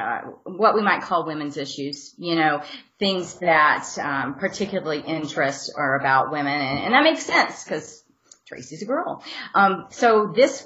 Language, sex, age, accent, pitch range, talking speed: English, female, 30-49, American, 145-205 Hz, 165 wpm